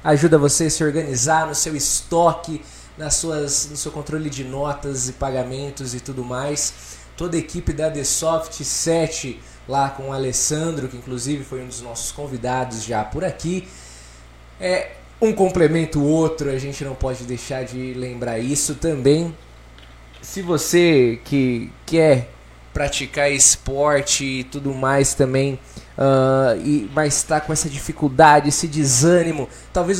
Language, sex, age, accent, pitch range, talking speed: Portuguese, male, 20-39, Brazilian, 135-160 Hz, 140 wpm